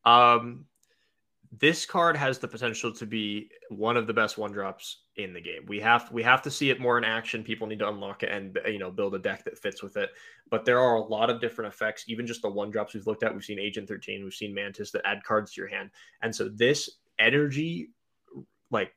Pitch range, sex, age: 105-120 Hz, male, 20-39